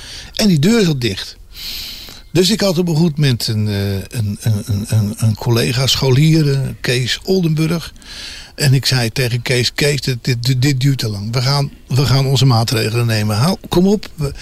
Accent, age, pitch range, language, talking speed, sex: Dutch, 60-79, 115-160 Hz, Dutch, 155 wpm, male